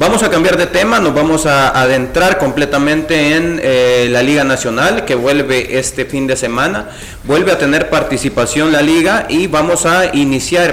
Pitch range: 125-145 Hz